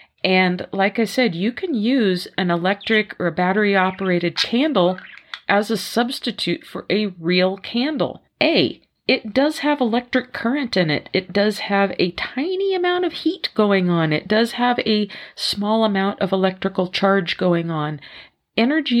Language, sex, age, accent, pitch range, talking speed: English, female, 40-59, American, 180-225 Hz, 155 wpm